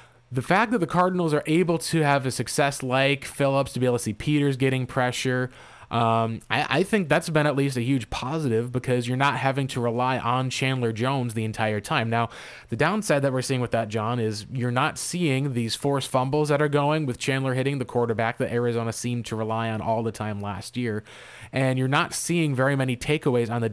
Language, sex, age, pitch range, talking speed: English, male, 20-39, 120-140 Hz, 225 wpm